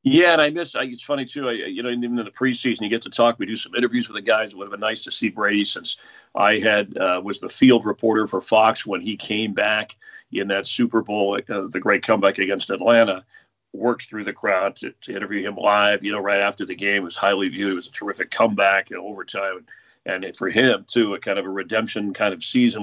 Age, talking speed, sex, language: 40-59, 250 wpm, male, English